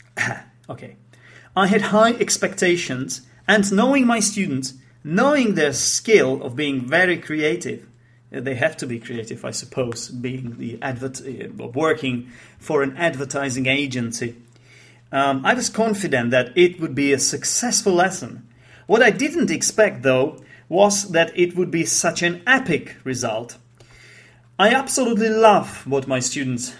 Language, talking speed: English, 140 wpm